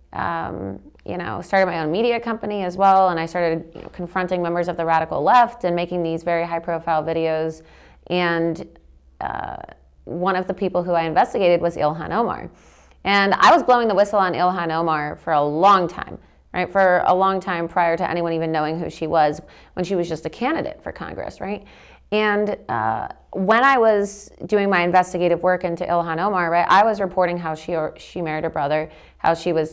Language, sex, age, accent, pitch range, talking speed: English, female, 30-49, American, 160-185 Hz, 200 wpm